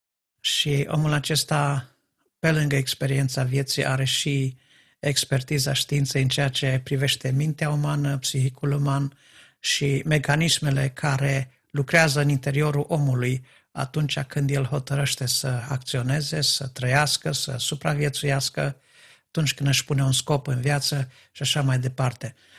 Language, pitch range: Romanian, 130-150 Hz